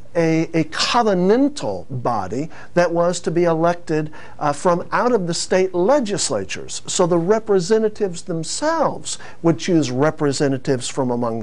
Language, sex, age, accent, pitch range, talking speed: English, male, 50-69, American, 145-185 Hz, 130 wpm